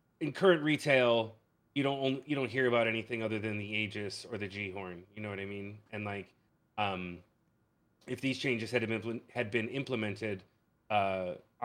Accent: American